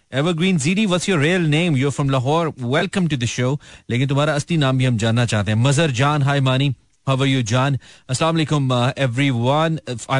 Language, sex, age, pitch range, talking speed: Hindi, male, 30-49, 125-170 Hz, 205 wpm